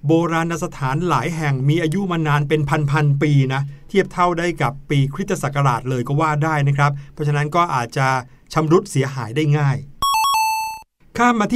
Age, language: 60-79, Thai